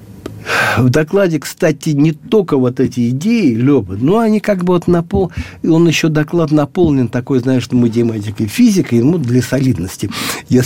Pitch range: 125-165 Hz